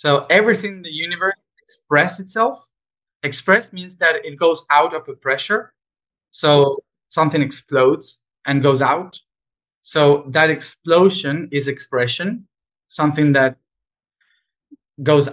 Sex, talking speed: male, 115 wpm